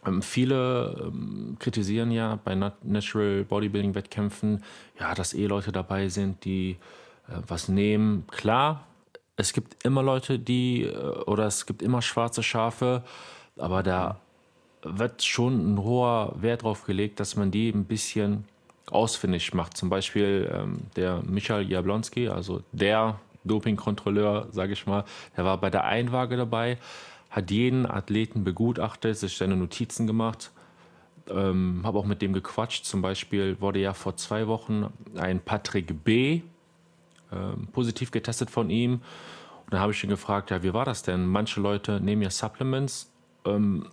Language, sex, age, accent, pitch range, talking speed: German, male, 30-49, German, 95-115 Hz, 155 wpm